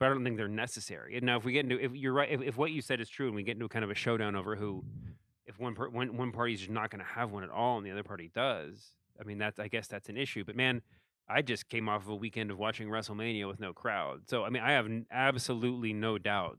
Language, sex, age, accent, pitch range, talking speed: English, male, 30-49, American, 105-130 Hz, 300 wpm